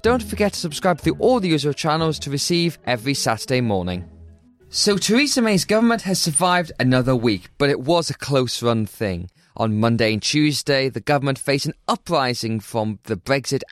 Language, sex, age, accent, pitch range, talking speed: English, male, 20-39, British, 115-160 Hz, 175 wpm